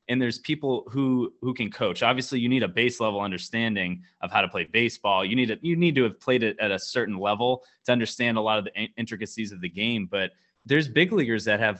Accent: American